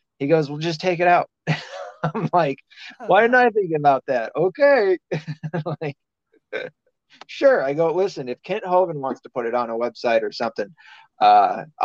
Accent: American